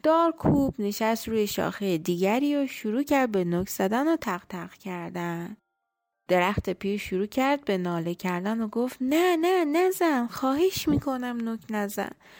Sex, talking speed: female, 150 wpm